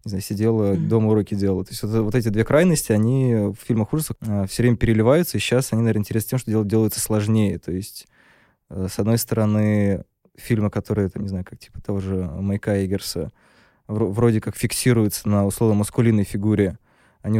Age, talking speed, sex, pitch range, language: 20-39, 175 wpm, male, 100-115 Hz, Russian